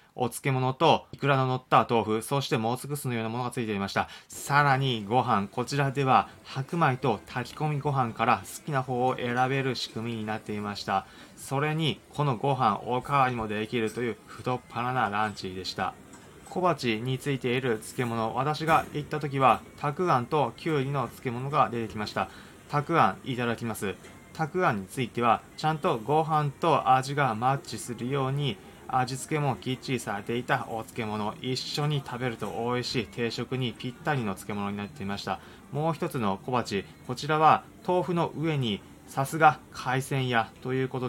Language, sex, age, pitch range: Japanese, male, 20-39, 110-140 Hz